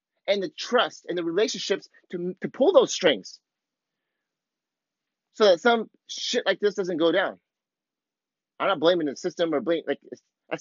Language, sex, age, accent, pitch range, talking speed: English, male, 30-49, American, 155-205 Hz, 160 wpm